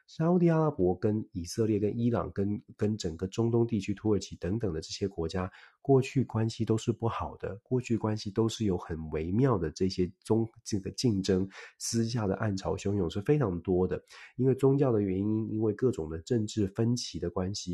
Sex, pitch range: male, 95-115 Hz